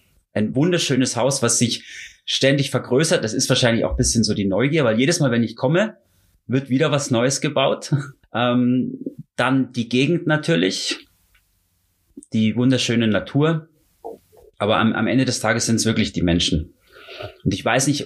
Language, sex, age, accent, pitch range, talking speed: German, male, 30-49, German, 105-135 Hz, 165 wpm